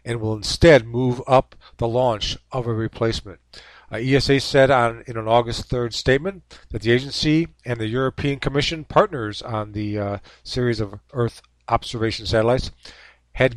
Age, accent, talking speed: 50-69, American, 155 wpm